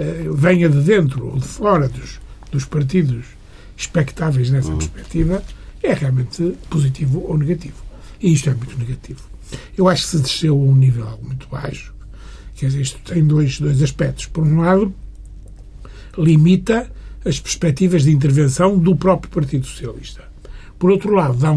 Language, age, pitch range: Portuguese, 60-79, 130-175 Hz